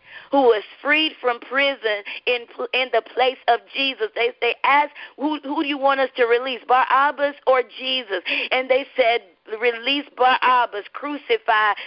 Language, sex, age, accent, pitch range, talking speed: English, female, 40-59, American, 220-280 Hz, 155 wpm